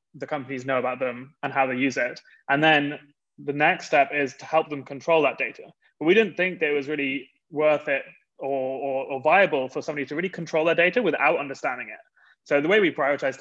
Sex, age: male, 20-39